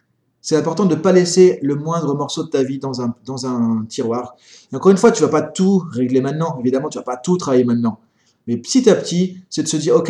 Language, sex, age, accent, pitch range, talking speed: French, male, 30-49, French, 130-185 Hz, 265 wpm